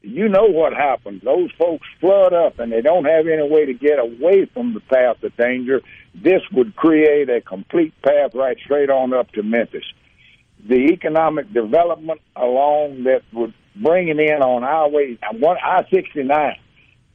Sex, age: male, 60-79